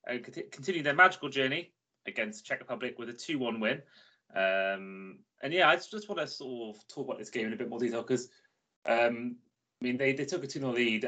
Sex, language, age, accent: male, English, 20-39, British